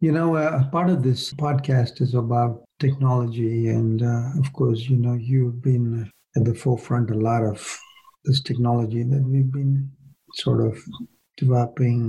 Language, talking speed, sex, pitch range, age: English, 160 wpm, male, 120-135 Hz, 50-69